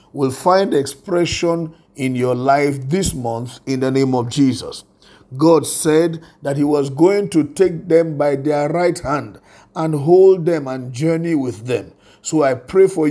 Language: English